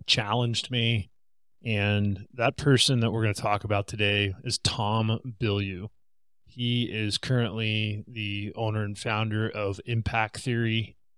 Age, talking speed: 20-39, 135 wpm